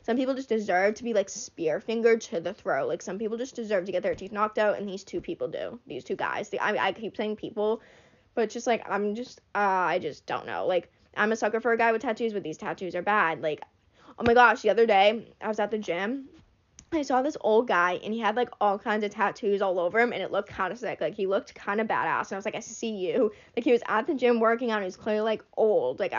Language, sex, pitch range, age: English, female, 180-230 Hz, 10-29